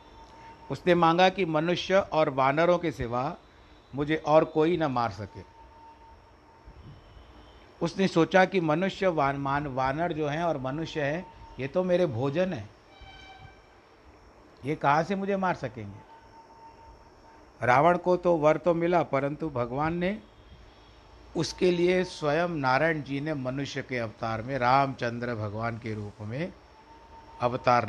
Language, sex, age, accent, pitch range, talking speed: Hindi, male, 60-79, native, 115-155 Hz, 130 wpm